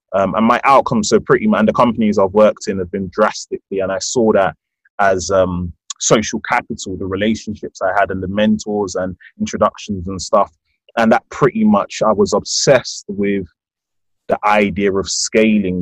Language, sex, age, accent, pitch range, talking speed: English, male, 20-39, British, 90-105 Hz, 180 wpm